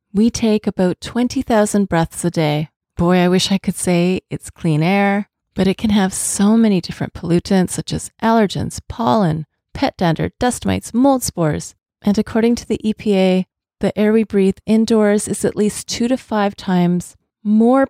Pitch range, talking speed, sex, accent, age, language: 175-215 Hz, 175 wpm, female, American, 30-49, English